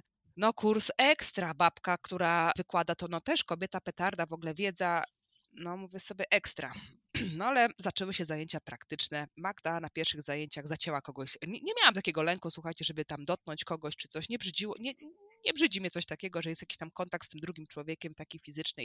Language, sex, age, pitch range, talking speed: Polish, female, 20-39, 160-200 Hz, 190 wpm